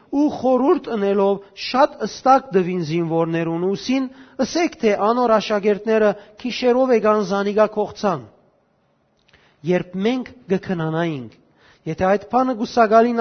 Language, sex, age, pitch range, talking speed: English, male, 40-59, 185-230 Hz, 110 wpm